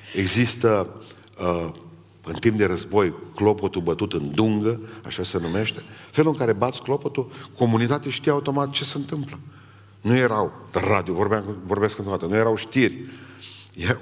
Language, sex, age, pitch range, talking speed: Romanian, male, 40-59, 100-130 Hz, 140 wpm